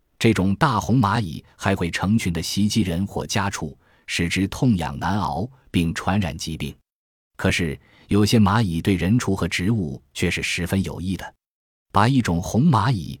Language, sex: Chinese, male